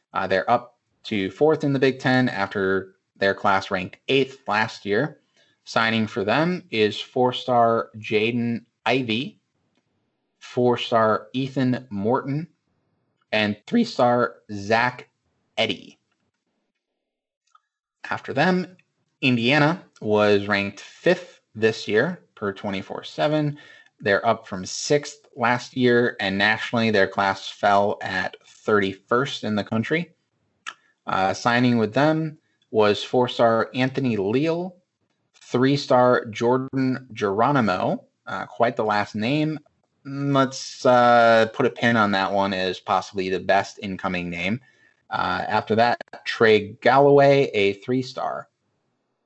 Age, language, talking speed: 30-49, English, 115 wpm